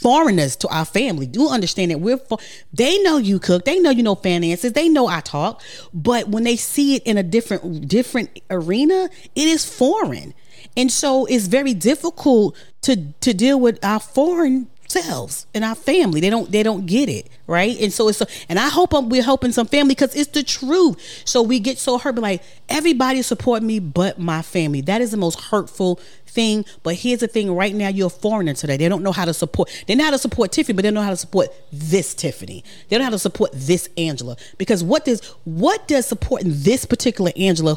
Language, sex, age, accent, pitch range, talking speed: English, female, 40-59, American, 170-250 Hz, 220 wpm